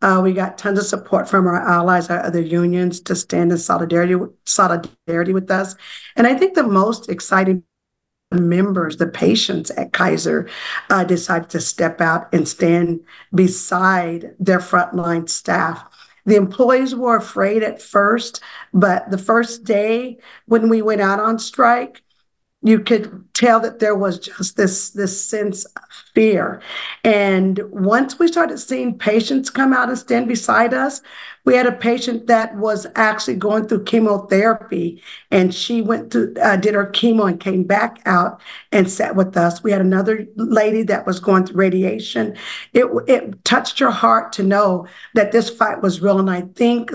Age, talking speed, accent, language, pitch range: 50-69, 165 wpm, American, English, 185-230 Hz